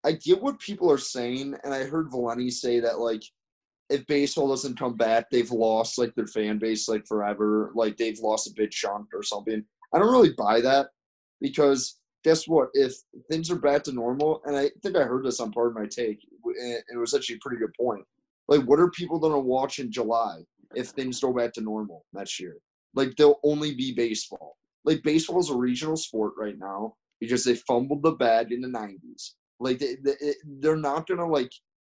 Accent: American